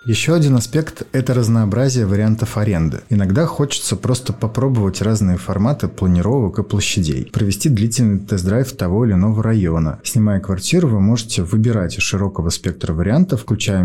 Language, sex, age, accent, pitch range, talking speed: Russian, male, 30-49, native, 95-125 Hz, 140 wpm